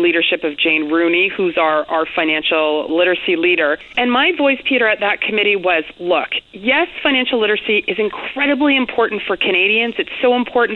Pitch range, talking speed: 180-240 Hz, 165 wpm